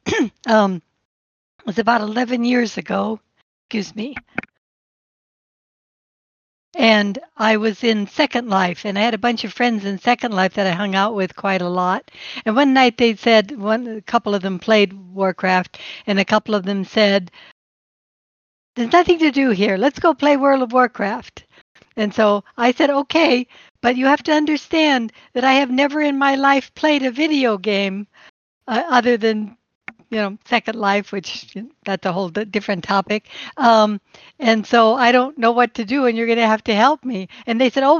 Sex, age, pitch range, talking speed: female, 60-79, 205-260 Hz, 185 wpm